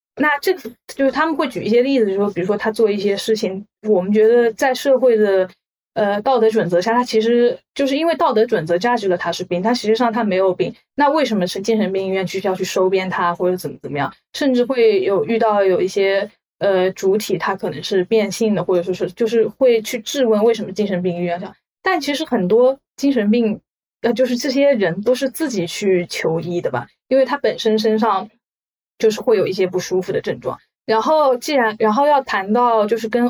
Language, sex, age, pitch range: Chinese, female, 10-29, 195-245 Hz